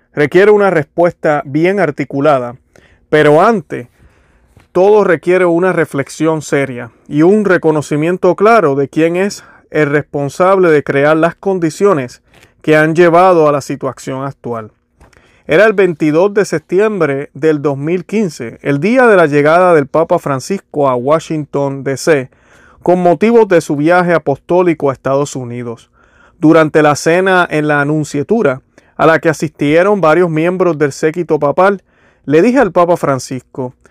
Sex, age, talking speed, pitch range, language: male, 30-49, 140 wpm, 140-175 Hz, Spanish